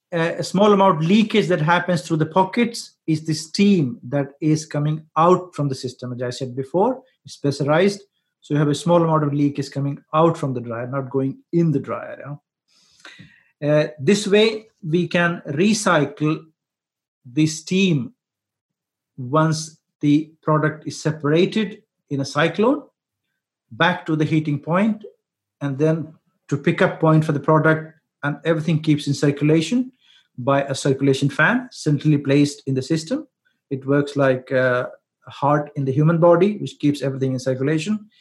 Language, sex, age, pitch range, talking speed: English, male, 50-69, 140-175 Hz, 160 wpm